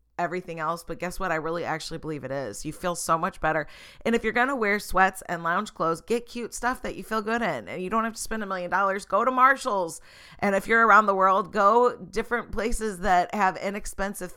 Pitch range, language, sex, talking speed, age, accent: 160-195 Hz, English, female, 240 wpm, 30-49, American